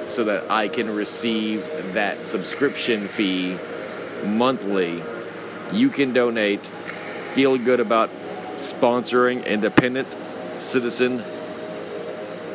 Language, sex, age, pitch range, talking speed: English, male, 40-59, 100-120 Hz, 85 wpm